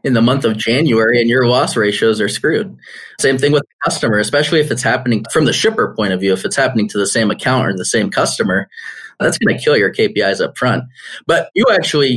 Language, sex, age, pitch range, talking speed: English, male, 20-39, 110-145 Hz, 235 wpm